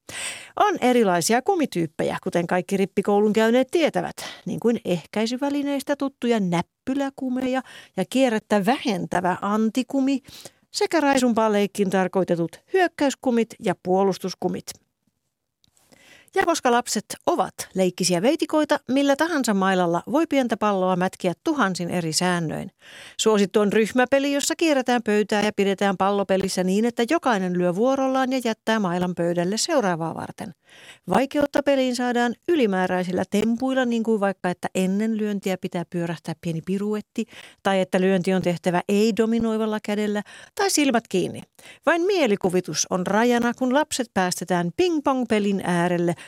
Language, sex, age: Finnish, female, 40-59